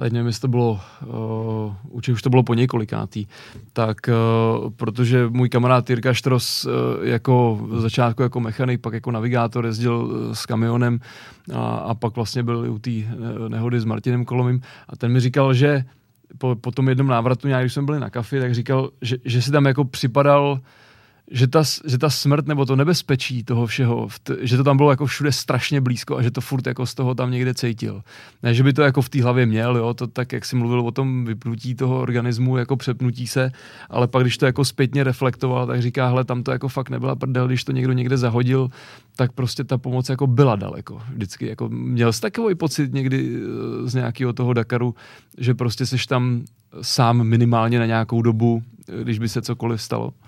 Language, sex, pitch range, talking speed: Czech, male, 115-130 Hz, 200 wpm